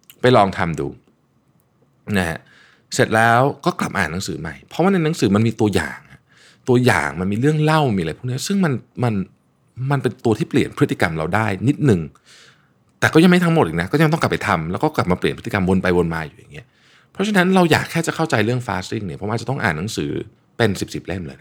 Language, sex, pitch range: Thai, male, 100-145 Hz